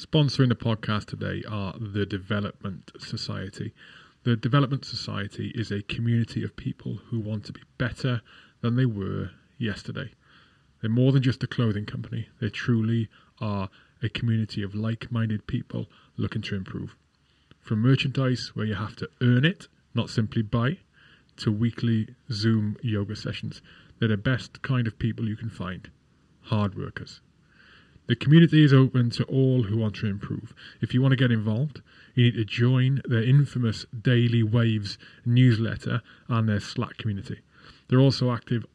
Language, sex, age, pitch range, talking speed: English, male, 30-49, 110-125 Hz, 160 wpm